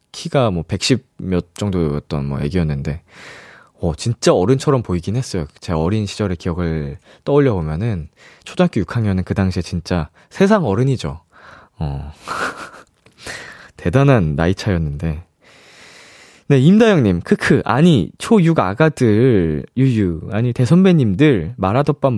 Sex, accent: male, native